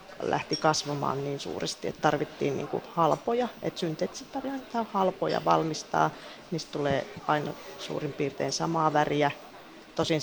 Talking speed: 125 wpm